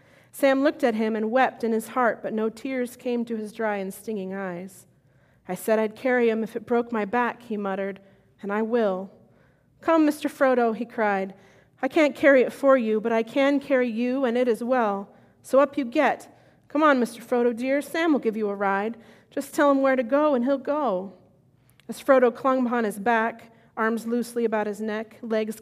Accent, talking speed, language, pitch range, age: American, 210 wpm, English, 210-260 Hz, 30-49